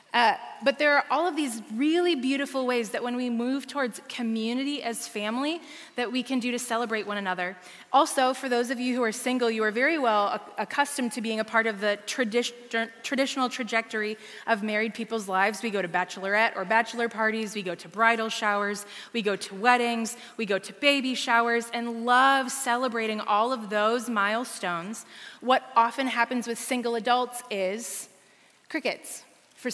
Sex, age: female, 20-39